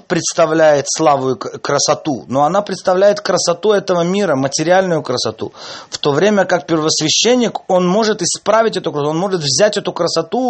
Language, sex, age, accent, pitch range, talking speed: Russian, male, 30-49, native, 145-195 Hz, 155 wpm